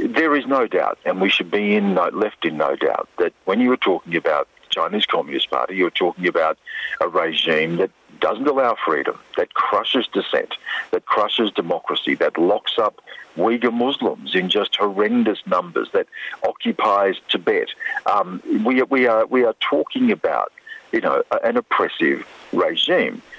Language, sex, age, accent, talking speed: English, male, 50-69, Australian, 165 wpm